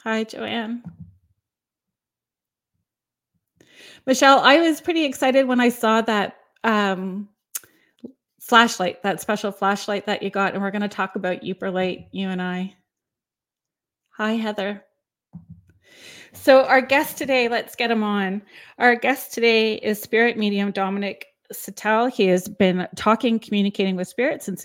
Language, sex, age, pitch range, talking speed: English, female, 30-49, 185-230 Hz, 135 wpm